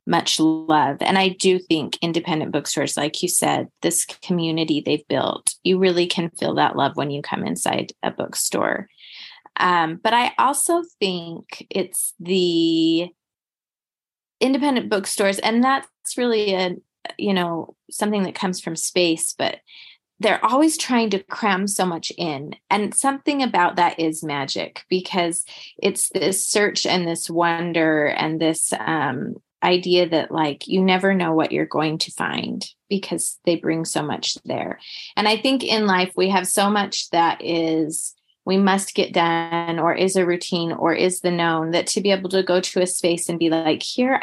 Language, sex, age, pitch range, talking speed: English, female, 20-39, 165-195 Hz, 170 wpm